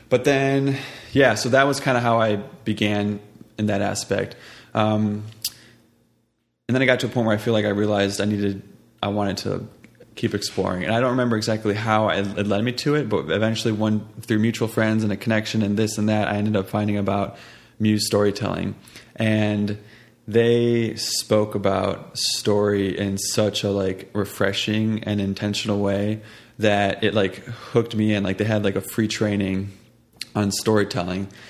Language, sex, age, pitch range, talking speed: English, male, 20-39, 100-115 Hz, 180 wpm